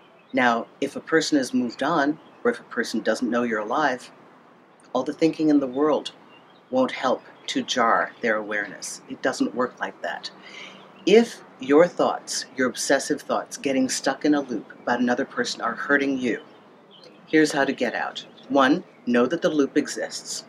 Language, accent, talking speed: English, American, 175 wpm